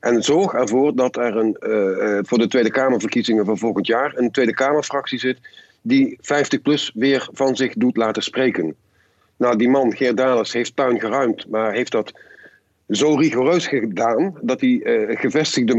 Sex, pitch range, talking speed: male, 110-150 Hz, 170 wpm